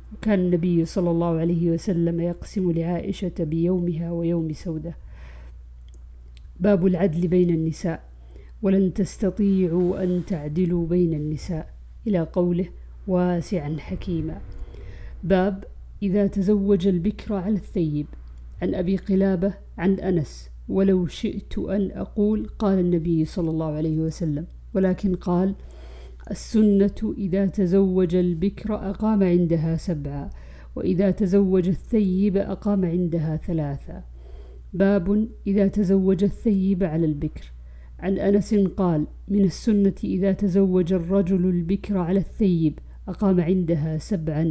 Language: Arabic